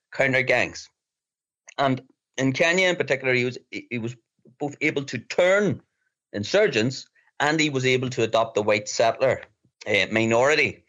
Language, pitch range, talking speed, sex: English, 115-155 Hz, 155 wpm, male